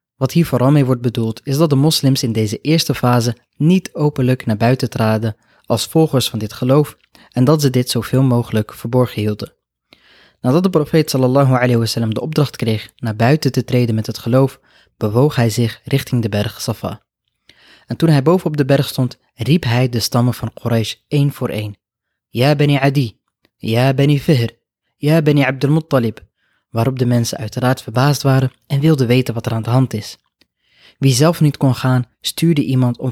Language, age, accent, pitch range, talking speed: Dutch, 20-39, Dutch, 115-140 Hz, 195 wpm